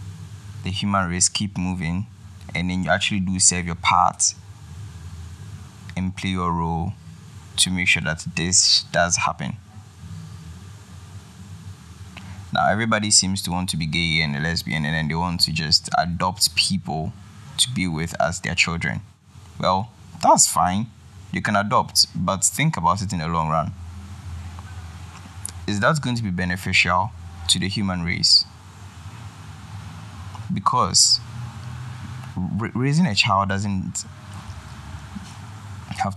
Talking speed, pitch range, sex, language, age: 130 wpm, 90-100 Hz, male, English, 20-39